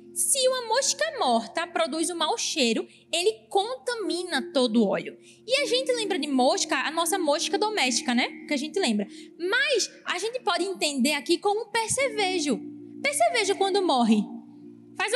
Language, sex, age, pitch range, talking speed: Portuguese, female, 10-29, 250-345 Hz, 160 wpm